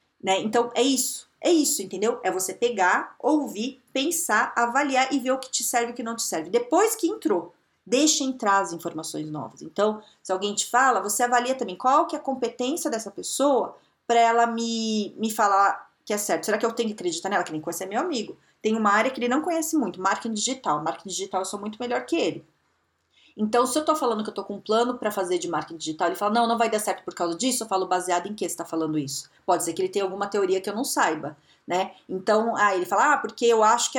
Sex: female